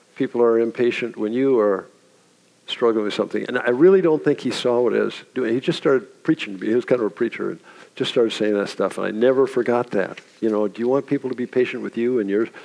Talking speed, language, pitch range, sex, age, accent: 265 wpm, English, 115-150 Hz, male, 50-69, American